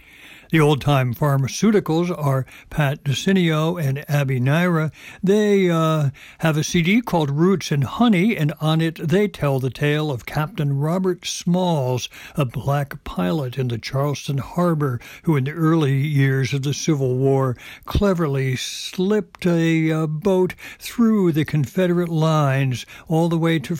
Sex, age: male, 60-79